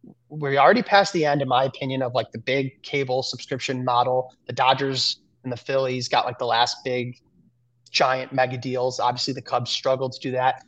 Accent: American